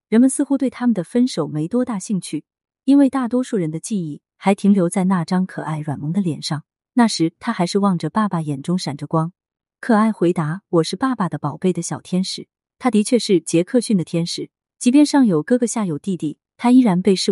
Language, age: Chinese, 30-49